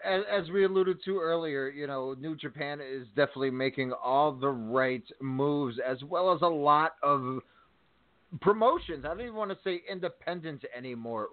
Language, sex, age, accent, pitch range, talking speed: English, male, 30-49, American, 135-165 Hz, 165 wpm